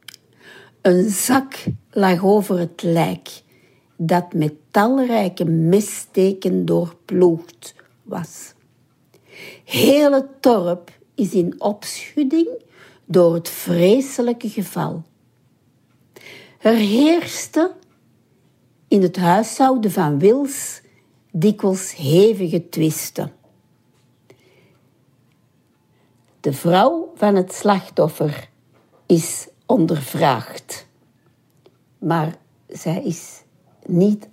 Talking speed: 75 wpm